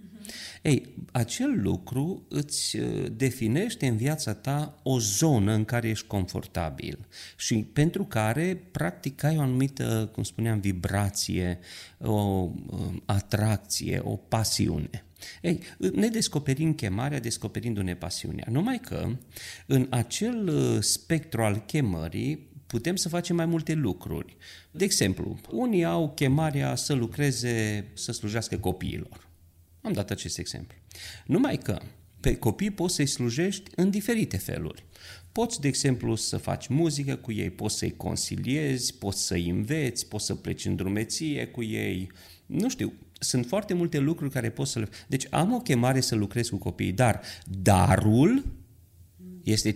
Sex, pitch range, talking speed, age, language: male, 100-150 Hz, 135 wpm, 40-59, Romanian